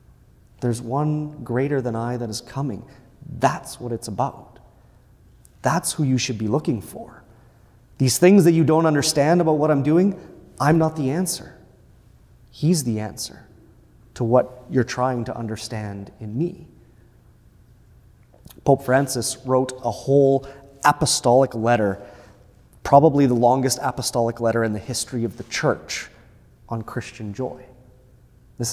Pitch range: 115-155 Hz